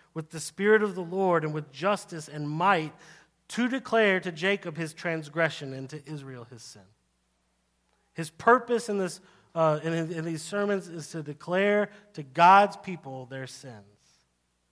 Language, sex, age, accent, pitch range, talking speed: English, male, 40-59, American, 145-185 Hz, 160 wpm